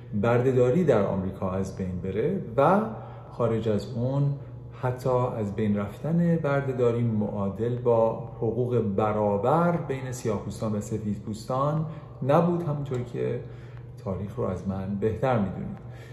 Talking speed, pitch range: 125 wpm, 110-135 Hz